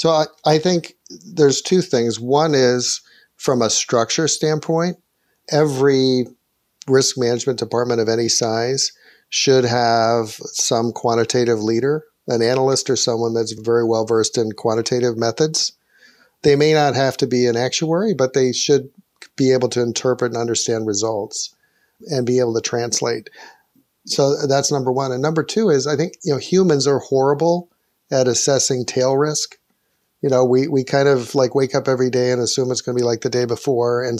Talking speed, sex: 175 wpm, male